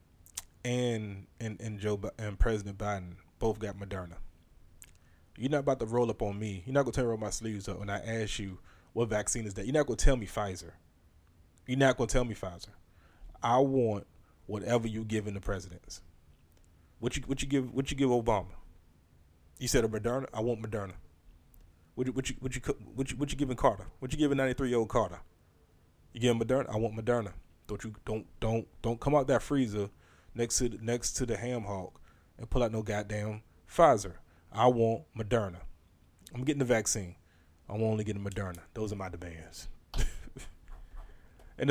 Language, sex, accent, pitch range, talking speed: English, male, American, 85-115 Hz, 205 wpm